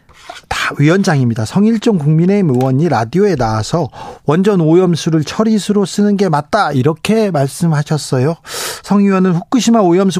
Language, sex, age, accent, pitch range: Korean, male, 40-59, native, 150-205 Hz